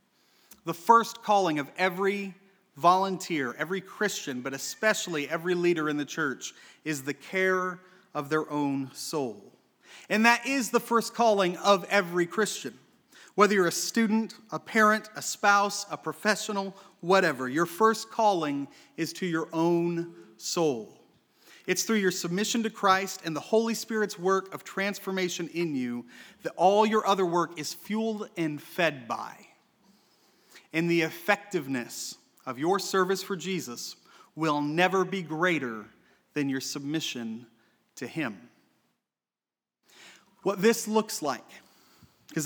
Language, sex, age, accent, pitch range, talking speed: English, male, 30-49, American, 160-205 Hz, 135 wpm